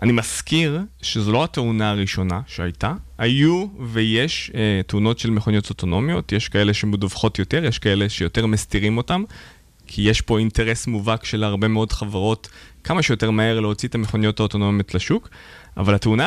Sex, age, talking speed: male, 20-39, 155 wpm